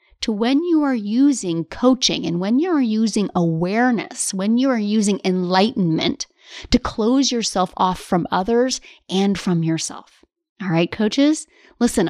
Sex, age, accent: female, 30-49, American